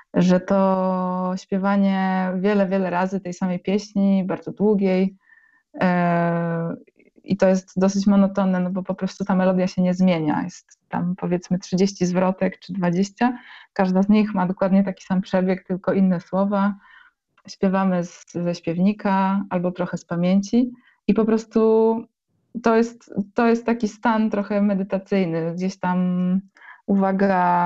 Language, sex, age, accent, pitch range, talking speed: Polish, female, 20-39, native, 180-210 Hz, 135 wpm